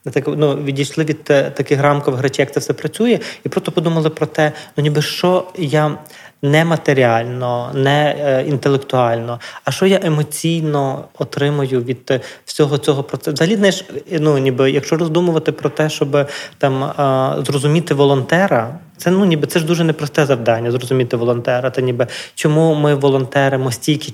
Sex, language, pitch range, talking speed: male, Ukrainian, 130-155 Hz, 145 wpm